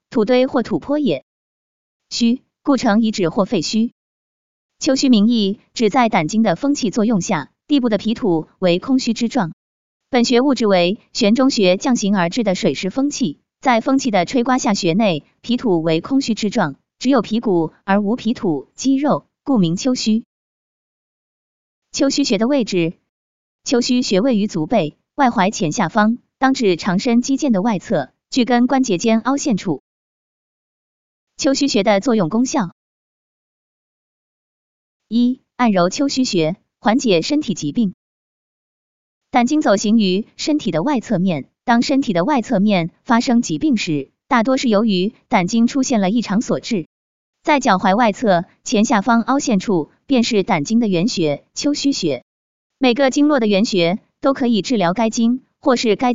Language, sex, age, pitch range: Chinese, female, 20-39, 195-255 Hz